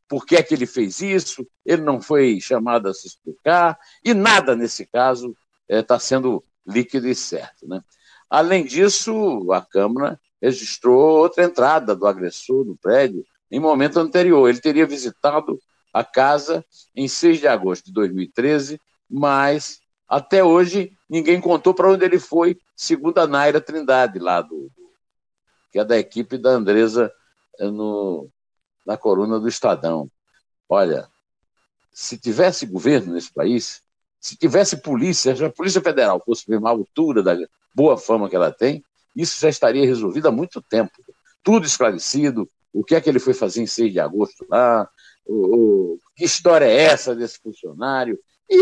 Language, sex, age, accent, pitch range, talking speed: Portuguese, male, 60-79, Brazilian, 125-195 Hz, 155 wpm